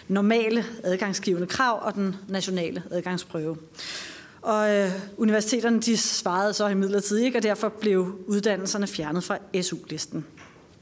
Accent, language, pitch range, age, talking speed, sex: native, Danish, 190-230 Hz, 30-49, 120 wpm, female